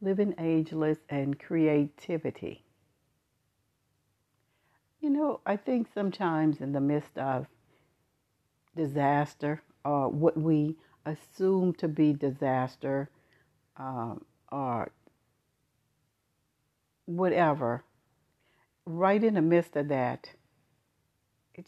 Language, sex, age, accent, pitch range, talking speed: English, female, 60-79, American, 140-175 Hz, 85 wpm